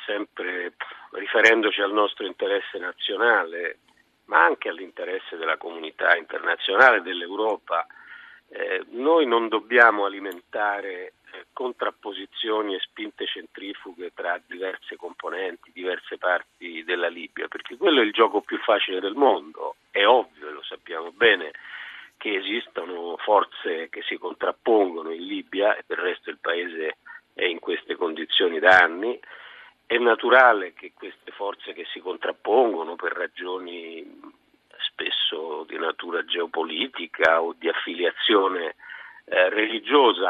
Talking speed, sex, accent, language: 125 wpm, male, native, Italian